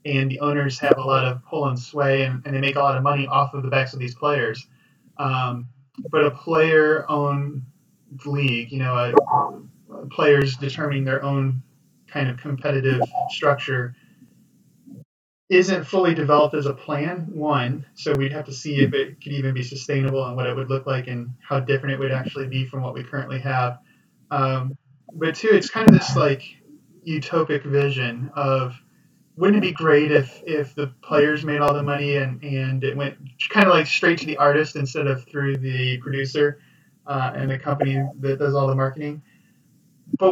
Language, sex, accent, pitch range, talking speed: English, male, American, 135-150 Hz, 185 wpm